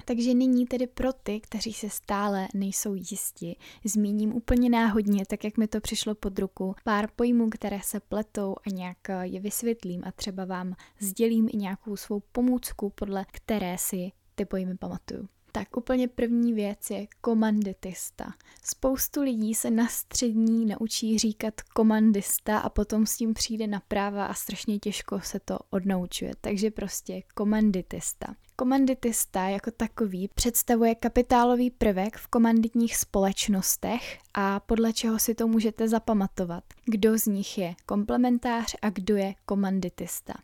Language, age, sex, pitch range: Czech, 10-29, female, 200-230 Hz